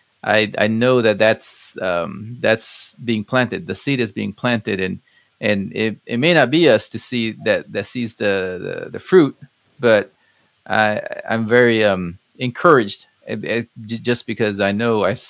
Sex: male